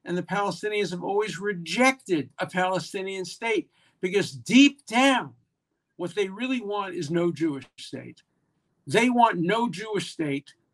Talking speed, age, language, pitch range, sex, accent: 140 wpm, 50-69, English, 145-200 Hz, male, American